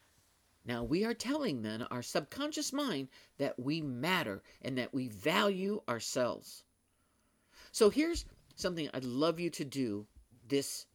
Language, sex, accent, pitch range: English, male, American, 120-160 Hz